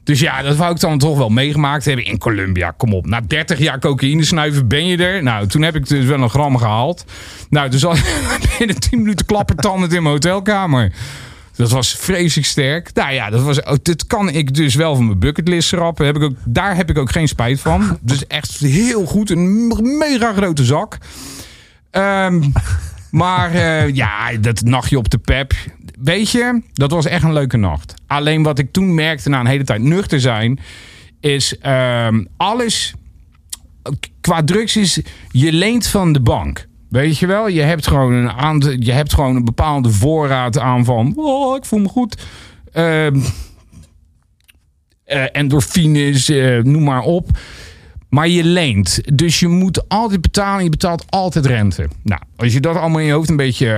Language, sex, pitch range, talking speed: Dutch, male, 120-170 Hz, 175 wpm